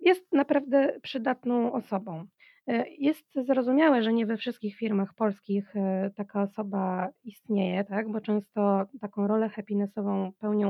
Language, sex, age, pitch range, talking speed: Polish, female, 20-39, 210-255 Hz, 125 wpm